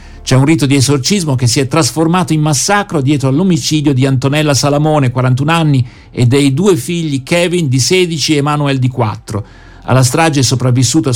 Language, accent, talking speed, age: Italian, native, 175 wpm, 50-69